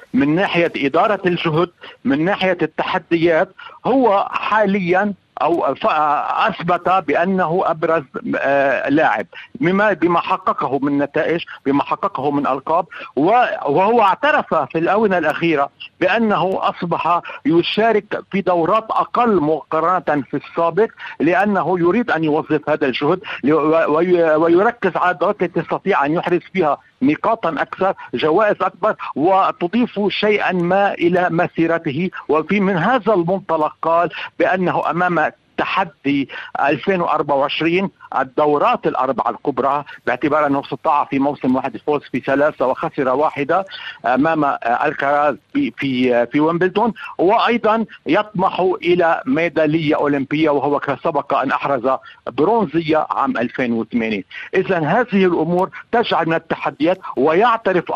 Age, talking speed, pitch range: 50-69, 110 wpm, 150-195 Hz